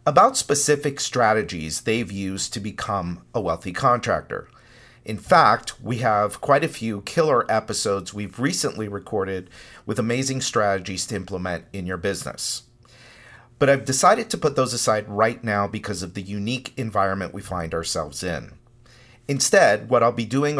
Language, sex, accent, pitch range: English, male, American, 100-130 Hz